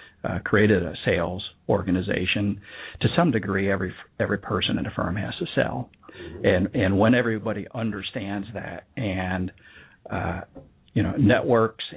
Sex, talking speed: male, 140 wpm